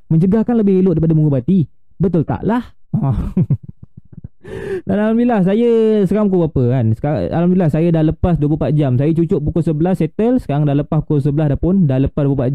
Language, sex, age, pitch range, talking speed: Malay, male, 20-39, 135-175 Hz, 180 wpm